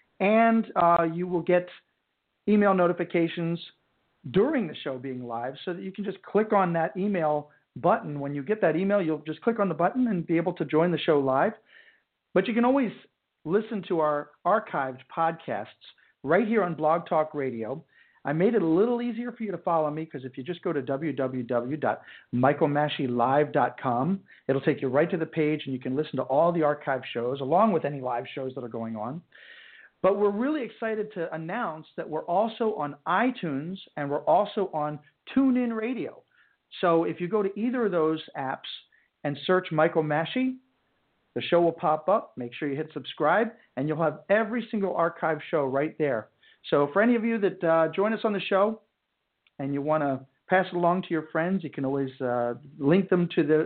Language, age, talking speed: English, 50-69, 200 wpm